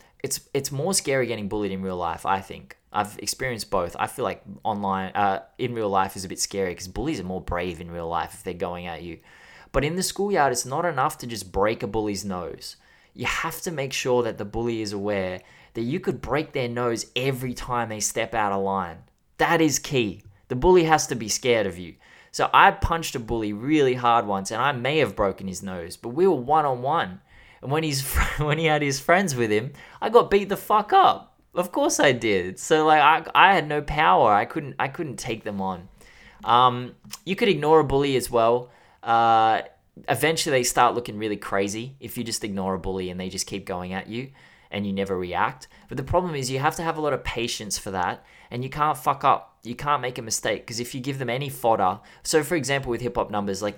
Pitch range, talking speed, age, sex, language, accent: 95-135 Hz, 235 wpm, 20-39, male, English, Australian